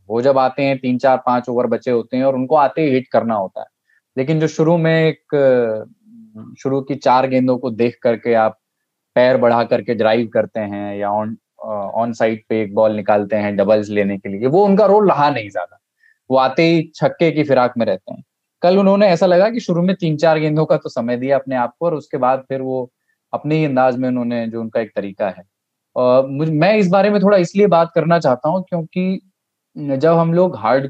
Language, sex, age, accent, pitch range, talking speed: Hindi, male, 20-39, native, 115-155 Hz, 220 wpm